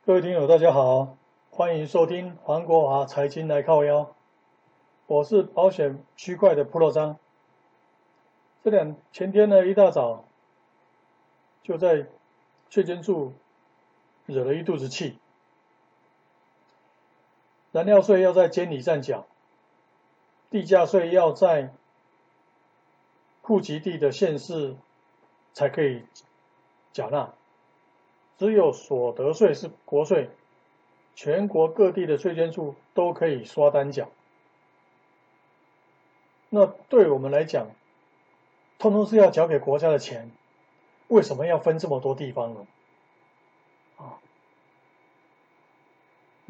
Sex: male